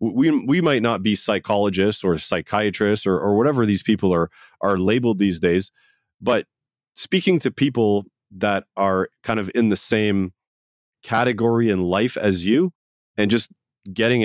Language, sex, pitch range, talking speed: English, male, 95-115 Hz, 155 wpm